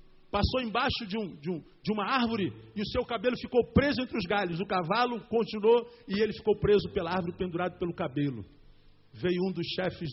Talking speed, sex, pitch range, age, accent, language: 200 wpm, male, 155-255 Hz, 50-69, Brazilian, Portuguese